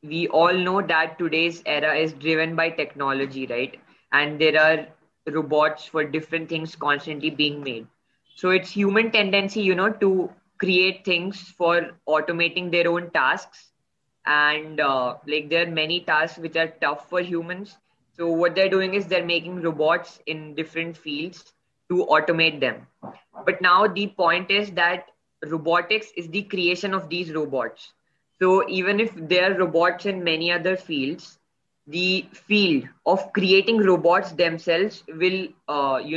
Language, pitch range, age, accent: English, 155-185 Hz, 20-39, Indian